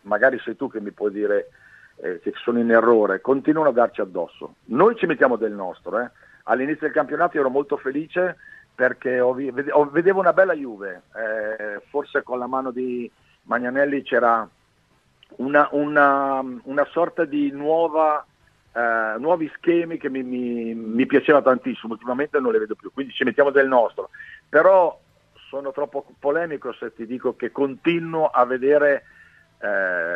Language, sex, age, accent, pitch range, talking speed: Italian, male, 50-69, native, 125-165 Hz, 160 wpm